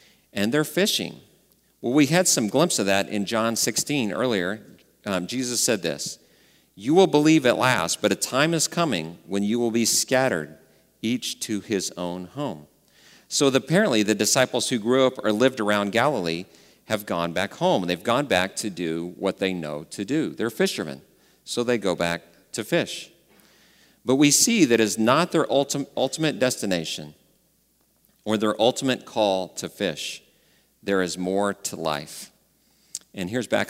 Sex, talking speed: male, 165 wpm